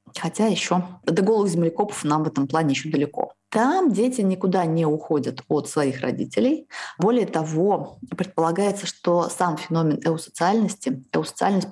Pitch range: 155-195 Hz